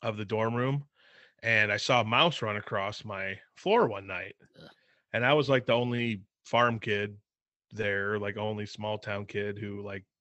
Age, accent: 30-49, American